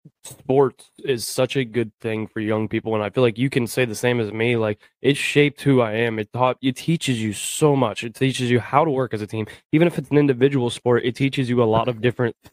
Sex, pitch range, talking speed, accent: male, 115-135 Hz, 265 wpm, American